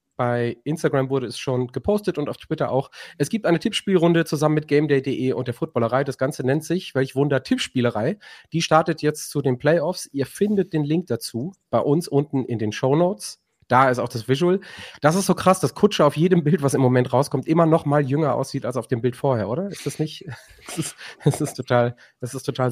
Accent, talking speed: German, 225 wpm